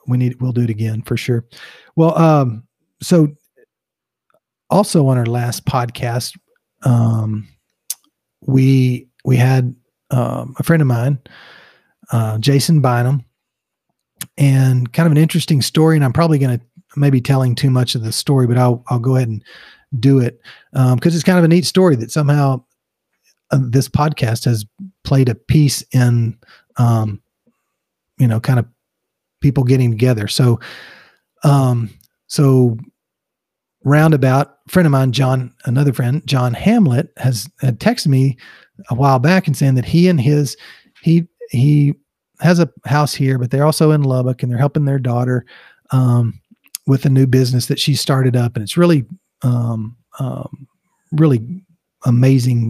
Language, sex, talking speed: English, male, 155 wpm